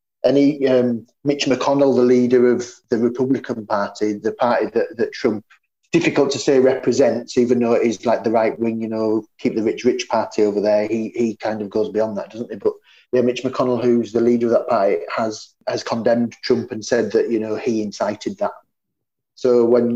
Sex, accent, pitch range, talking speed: male, British, 110-125 Hz, 205 wpm